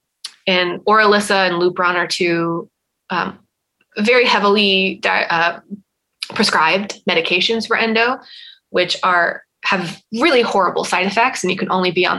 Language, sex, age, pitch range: English, female, 20-39, 180-225 Hz